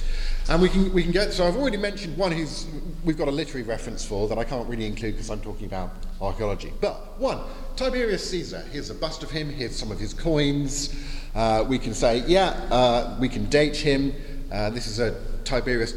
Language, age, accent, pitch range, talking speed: English, 40-59, British, 110-155 Hz, 215 wpm